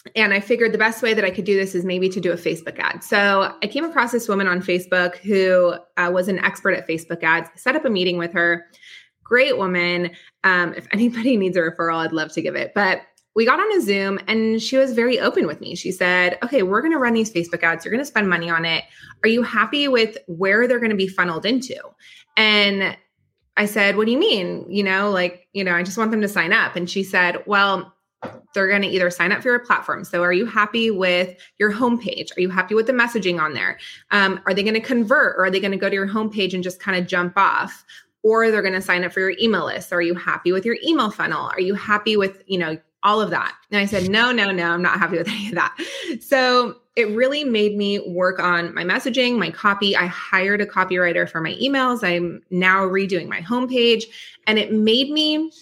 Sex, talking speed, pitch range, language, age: female, 245 wpm, 180-225 Hz, English, 20-39